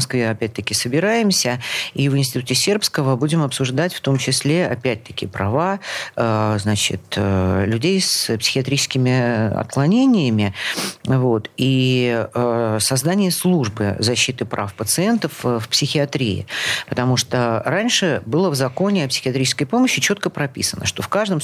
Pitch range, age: 115-165 Hz, 50-69